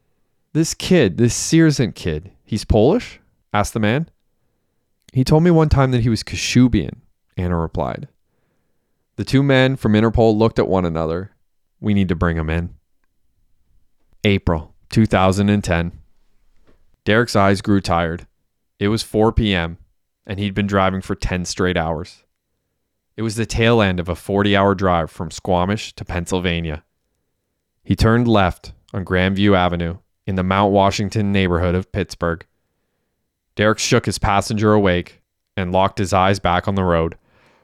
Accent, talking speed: American, 150 wpm